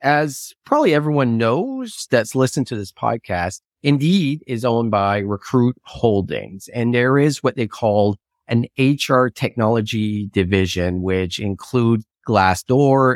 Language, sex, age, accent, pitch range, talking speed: English, male, 30-49, American, 100-130 Hz, 130 wpm